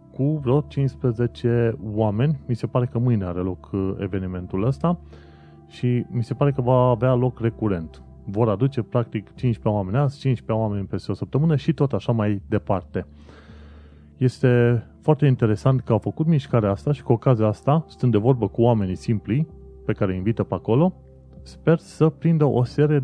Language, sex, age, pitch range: Romanian, male, 30-49, 95-125 Hz